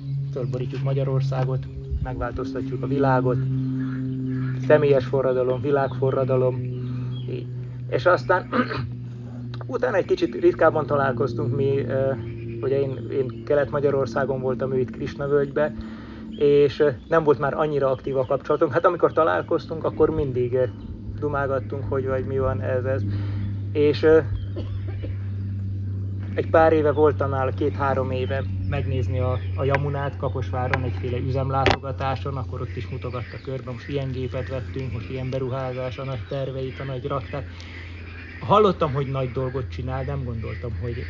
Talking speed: 125 wpm